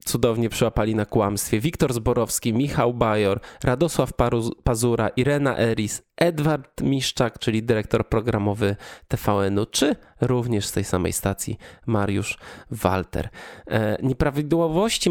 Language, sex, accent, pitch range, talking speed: Polish, male, native, 110-140 Hz, 105 wpm